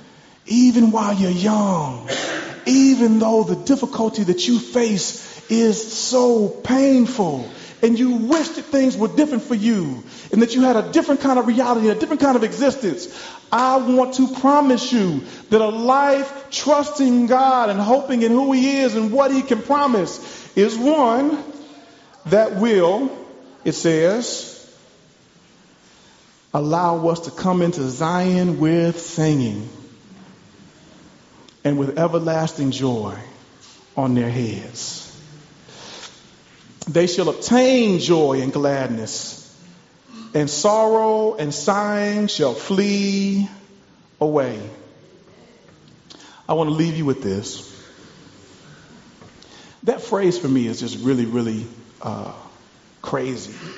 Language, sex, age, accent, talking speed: English, male, 40-59, American, 120 wpm